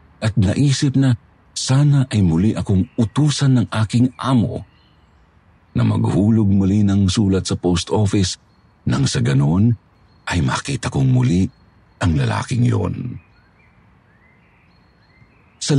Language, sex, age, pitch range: Filipino, male, 50-69, 90-120 Hz